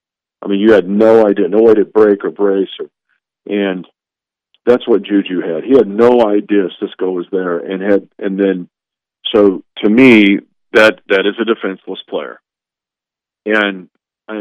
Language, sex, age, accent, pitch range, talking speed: English, male, 50-69, American, 100-110 Hz, 165 wpm